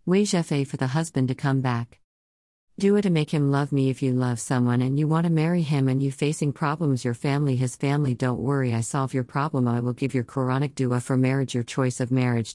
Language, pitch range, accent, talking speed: English, 125-150 Hz, American, 235 wpm